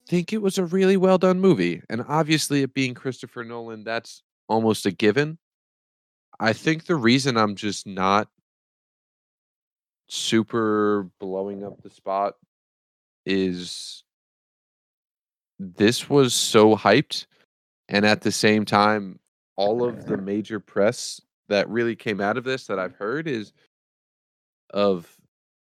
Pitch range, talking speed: 100-120 Hz, 130 wpm